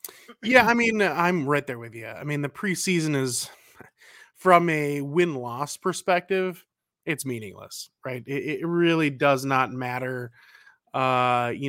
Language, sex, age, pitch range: English, male, 20-39, 130-170 Hz